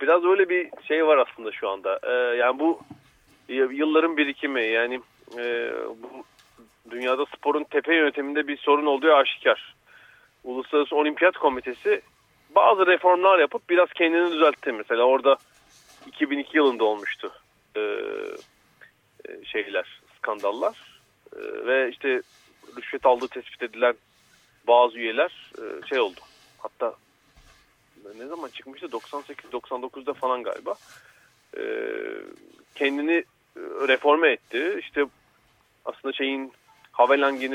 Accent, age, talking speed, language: native, 40-59, 110 wpm, Turkish